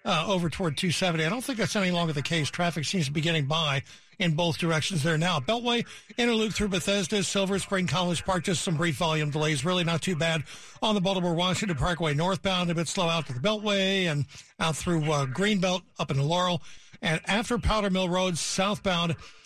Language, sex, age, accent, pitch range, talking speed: English, male, 60-79, American, 160-200 Hz, 205 wpm